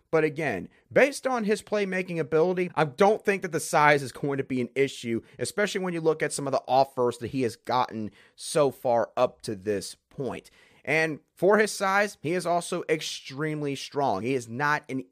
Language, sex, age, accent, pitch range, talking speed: English, male, 30-49, American, 135-200 Hz, 205 wpm